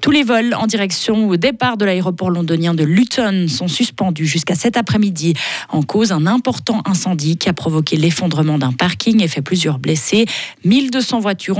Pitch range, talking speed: 160-195 Hz, 175 wpm